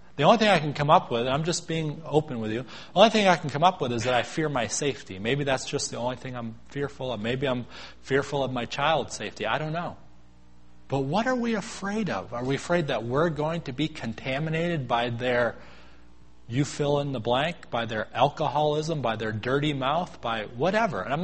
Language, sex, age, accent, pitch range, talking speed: English, male, 30-49, American, 105-150 Hz, 230 wpm